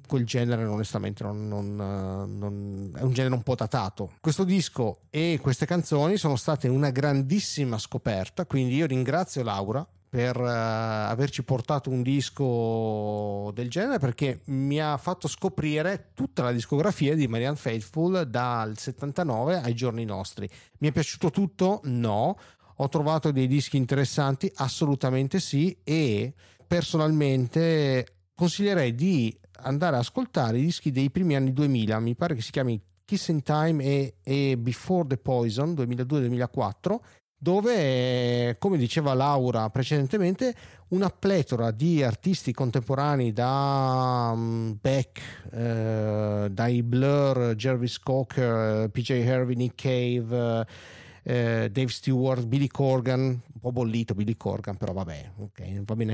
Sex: male